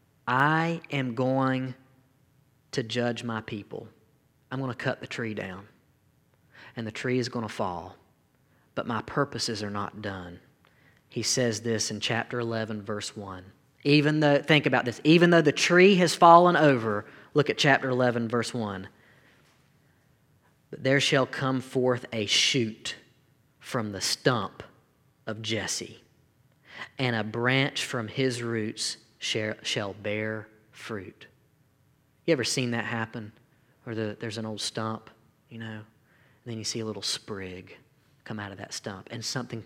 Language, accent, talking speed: English, American, 150 wpm